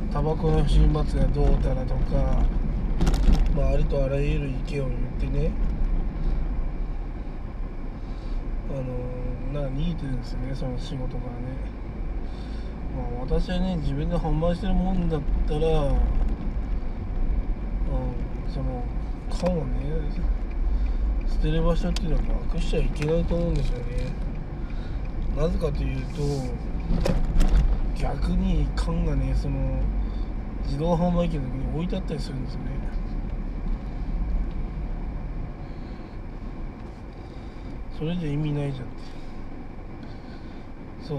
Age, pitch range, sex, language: 20-39, 125-160 Hz, male, Japanese